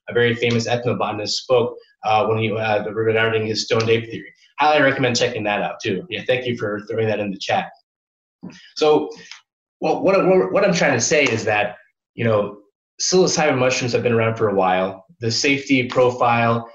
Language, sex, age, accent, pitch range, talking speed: English, male, 20-39, American, 110-130 Hz, 190 wpm